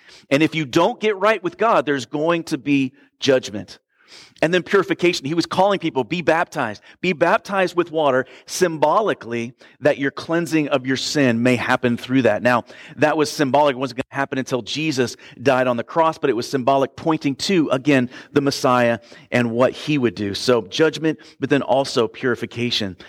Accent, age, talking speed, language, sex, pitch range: American, 40-59, 185 wpm, English, male, 125-155 Hz